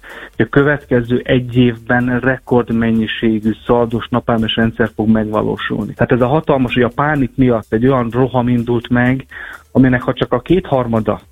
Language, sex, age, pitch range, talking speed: Hungarian, male, 30-49, 115-130 Hz, 155 wpm